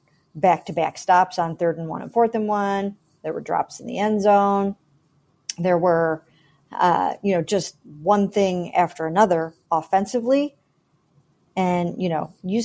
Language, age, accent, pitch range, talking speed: English, 50-69, American, 170-220 Hz, 160 wpm